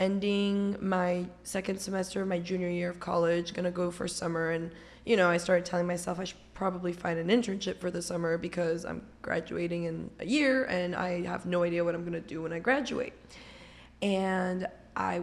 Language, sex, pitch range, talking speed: English, female, 180-220 Hz, 195 wpm